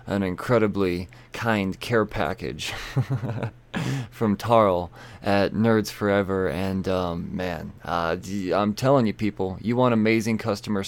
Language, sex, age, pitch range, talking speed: English, male, 20-39, 100-125 Hz, 120 wpm